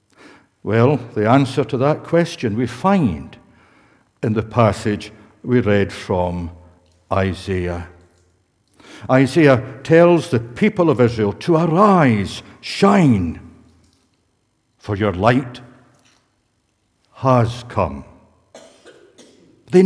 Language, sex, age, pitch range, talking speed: English, male, 60-79, 95-135 Hz, 90 wpm